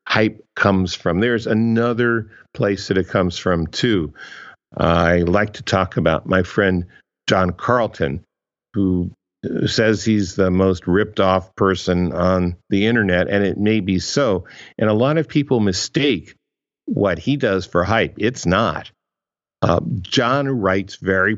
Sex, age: male, 50-69